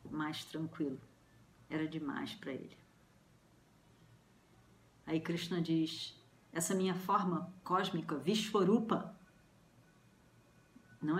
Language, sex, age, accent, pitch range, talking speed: Portuguese, female, 40-59, Brazilian, 160-190 Hz, 80 wpm